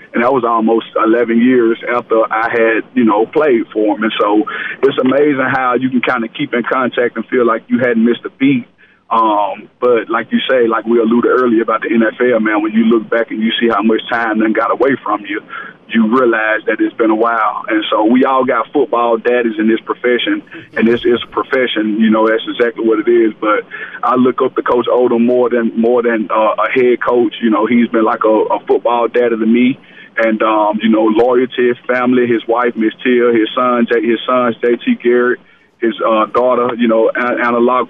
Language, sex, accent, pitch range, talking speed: English, male, American, 110-125 Hz, 220 wpm